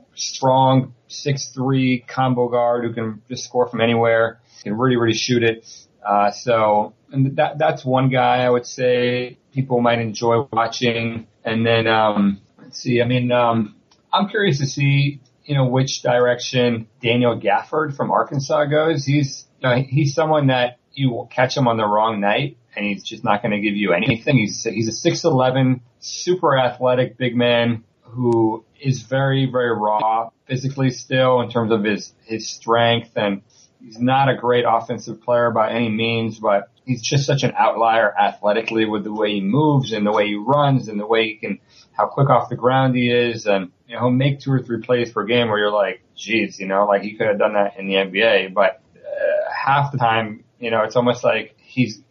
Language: English